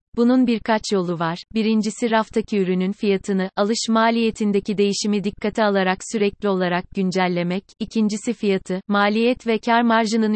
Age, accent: 30-49, native